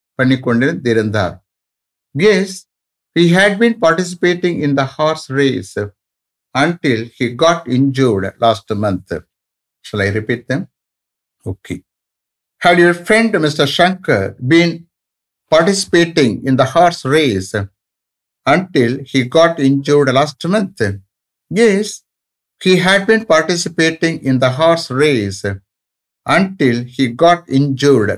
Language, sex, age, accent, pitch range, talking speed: English, male, 60-79, Indian, 115-175 Hz, 105 wpm